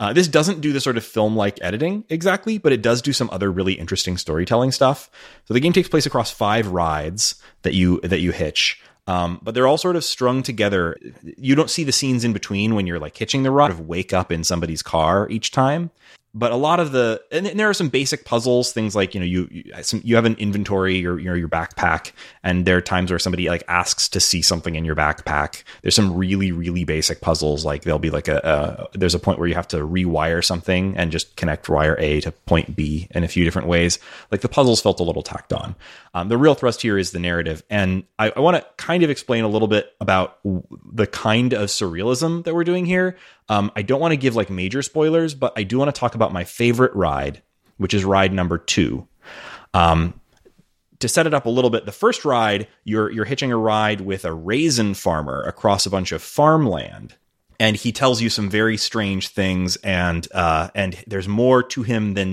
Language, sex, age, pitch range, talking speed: English, male, 30-49, 90-125 Hz, 230 wpm